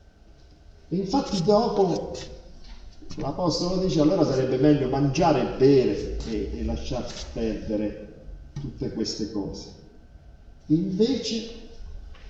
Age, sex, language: 40-59, male, Italian